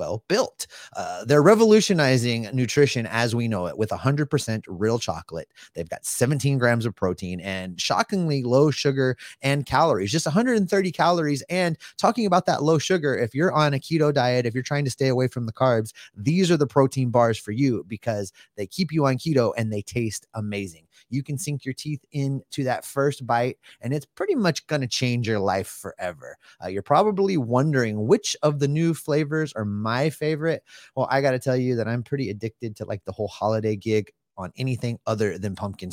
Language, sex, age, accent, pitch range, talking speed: English, male, 30-49, American, 110-145 Hz, 200 wpm